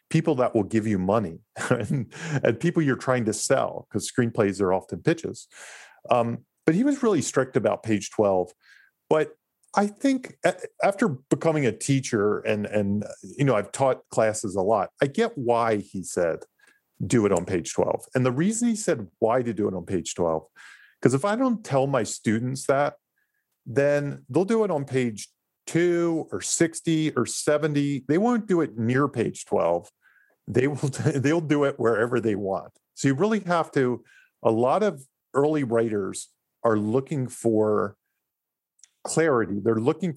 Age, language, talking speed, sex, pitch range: 40-59, English, 175 wpm, male, 110-160 Hz